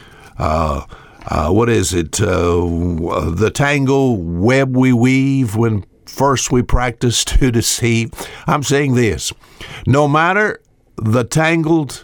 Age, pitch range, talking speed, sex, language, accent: 60-79, 105-145 Hz, 120 wpm, male, English, American